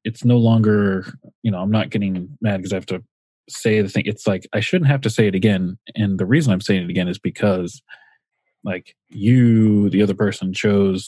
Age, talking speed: 20-39, 215 wpm